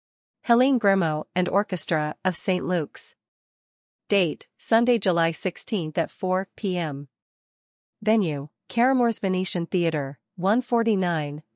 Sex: female